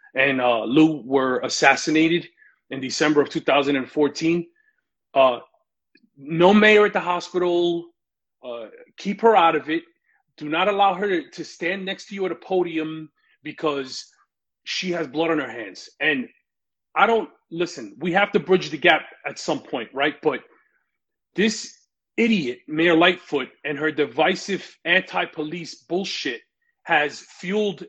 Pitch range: 155-200 Hz